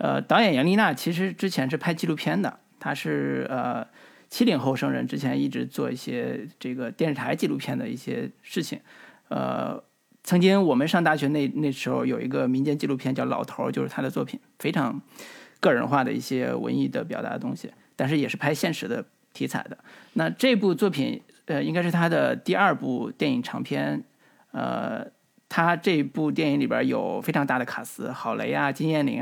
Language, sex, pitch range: Chinese, male, 135-195 Hz